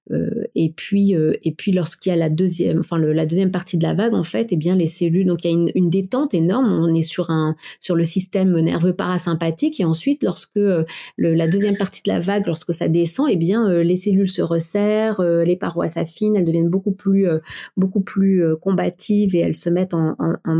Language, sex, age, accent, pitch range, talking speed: French, female, 30-49, French, 170-200 Hz, 250 wpm